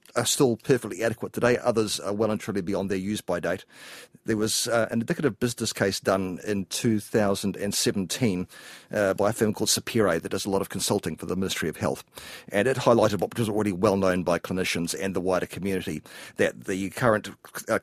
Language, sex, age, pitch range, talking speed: English, male, 40-59, 90-105 Hz, 200 wpm